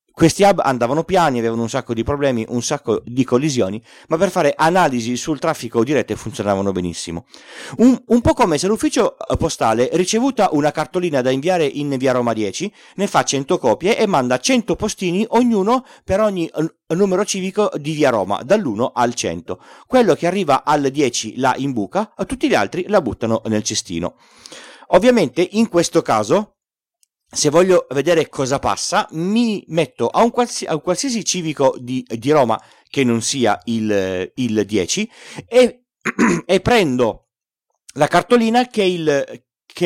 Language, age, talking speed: Italian, 40-59, 155 wpm